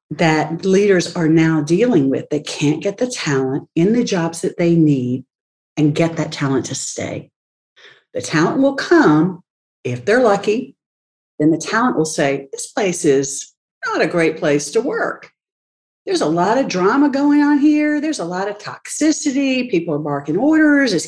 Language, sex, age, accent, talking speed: English, female, 50-69, American, 175 wpm